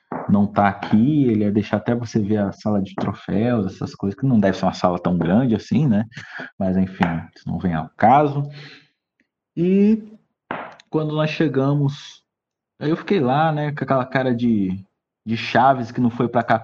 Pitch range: 105-140 Hz